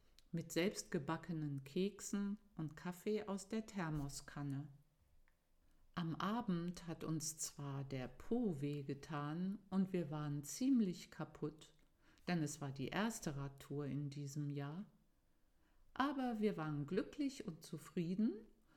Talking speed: 120 wpm